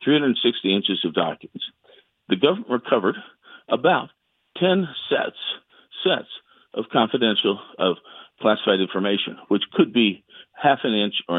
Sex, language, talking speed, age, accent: male, English, 120 wpm, 50-69, American